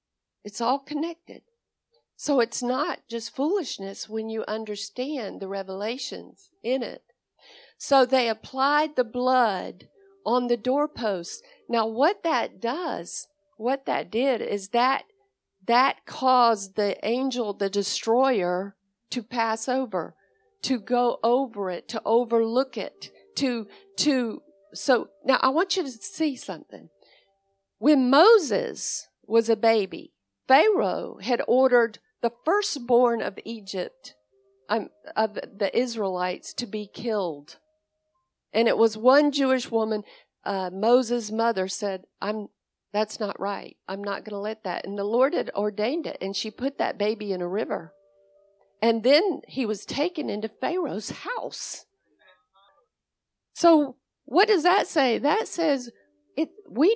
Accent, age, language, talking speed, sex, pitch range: American, 50-69, English, 135 wpm, female, 205-275 Hz